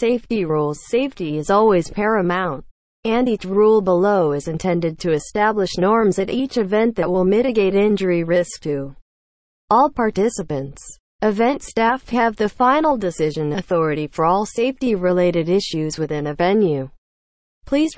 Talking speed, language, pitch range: 135 wpm, English, 155-225 Hz